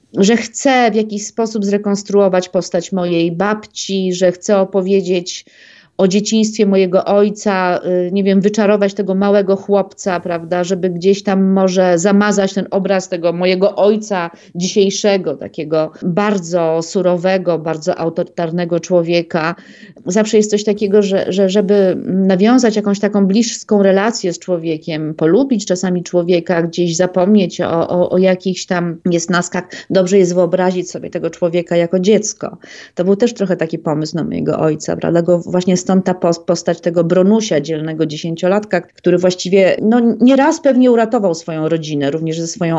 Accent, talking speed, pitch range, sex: native, 145 wpm, 175-205 Hz, female